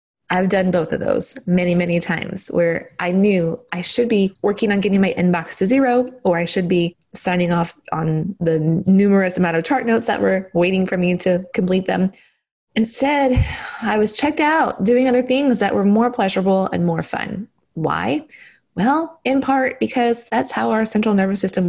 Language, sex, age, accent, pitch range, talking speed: English, female, 20-39, American, 180-235 Hz, 190 wpm